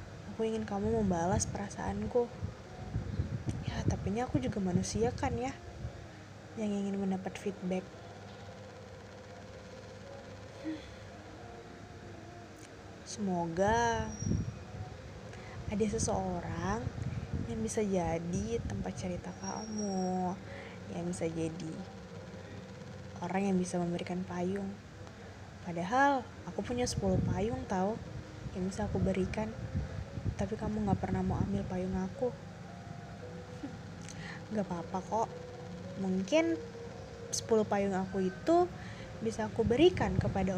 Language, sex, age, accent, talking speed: Indonesian, female, 20-39, native, 95 wpm